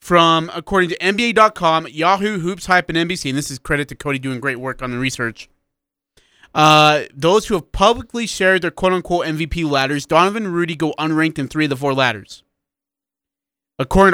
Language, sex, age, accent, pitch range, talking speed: English, male, 30-49, American, 150-190 Hz, 185 wpm